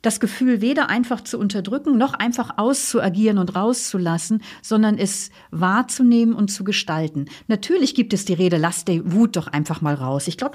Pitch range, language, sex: 175-235 Hz, German, female